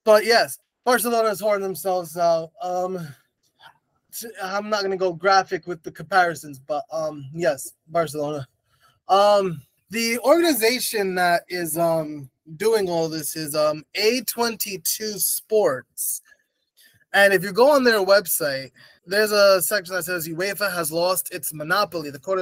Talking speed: 140 wpm